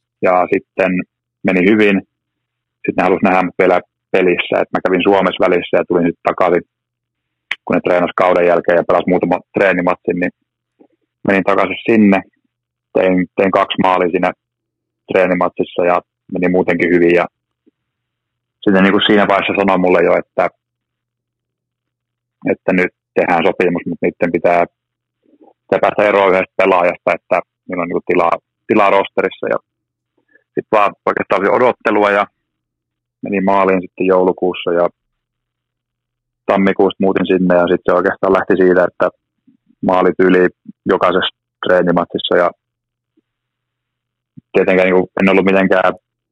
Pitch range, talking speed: 90-120 Hz, 125 wpm